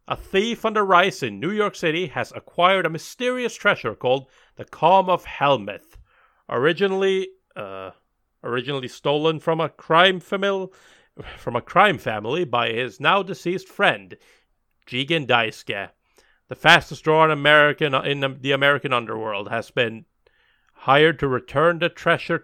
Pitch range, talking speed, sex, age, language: 125-175 Hz, 135 wpm, male, 40-59, English